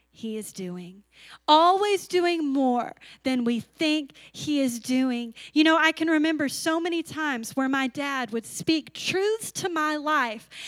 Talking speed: 165 wpm